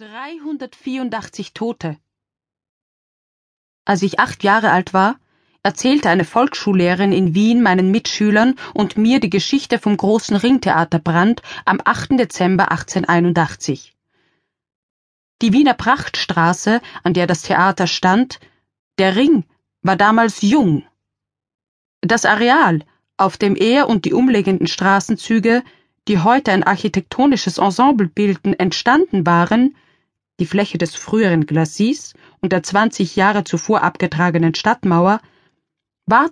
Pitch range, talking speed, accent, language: 175-230 Hz, 115 wpm, German, German